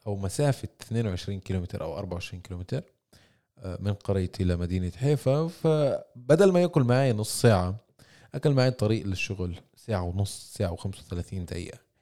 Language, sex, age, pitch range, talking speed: Arabic, male, 20-39, 100-140 Hz, 130 wpm